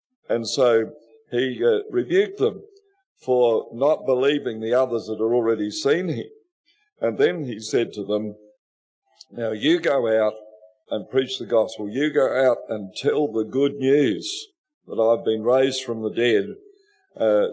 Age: 50-69